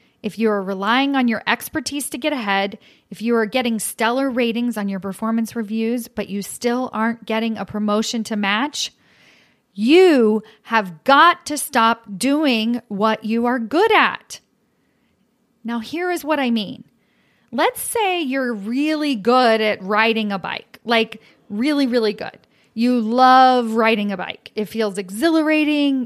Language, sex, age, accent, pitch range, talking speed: English, female, 40-59, American, 220-280 Hz, 155 wpm